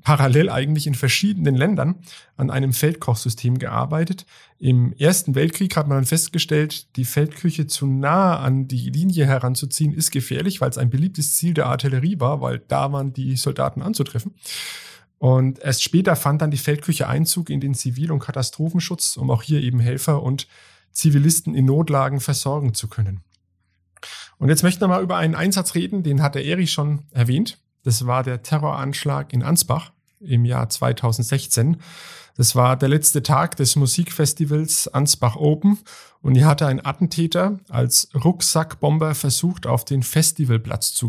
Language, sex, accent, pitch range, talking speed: German, male, German, 130-155 Hz, 160 wpm